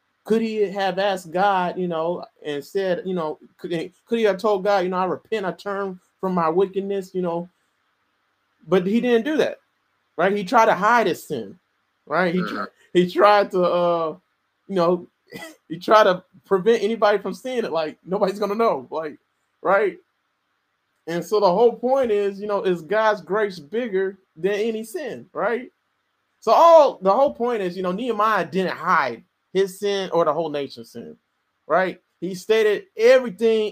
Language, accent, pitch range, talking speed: English, American, 180-230 Hz, 180 wpm